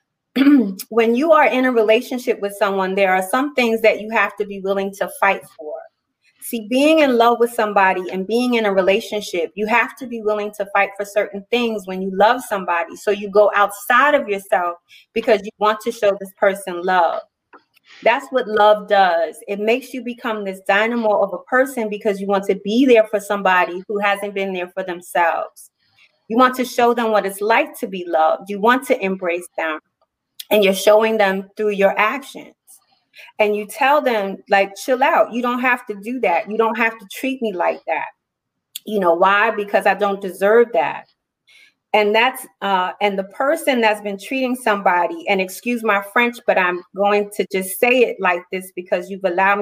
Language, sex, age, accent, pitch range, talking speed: English, female, 30-49, American, 195-240 Hz, 200 wpm